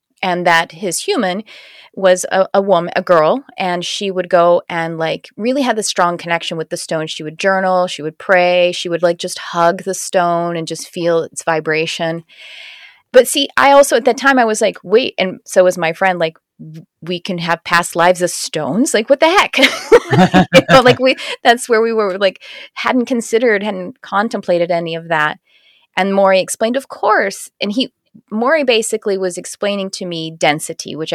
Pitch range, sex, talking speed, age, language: 170-225 Hz, female, 195 wpm, 30-49, English